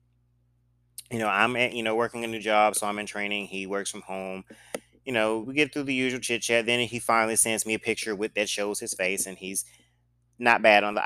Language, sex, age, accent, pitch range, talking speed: English, male, 30-49, American, 85-115 Hz, 245 wpm